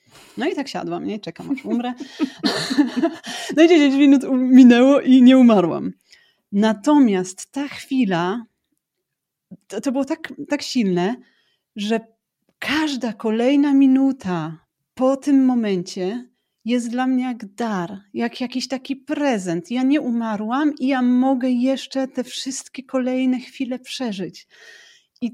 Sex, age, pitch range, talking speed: female, 30-49, 200-270 Hz, 125 wpm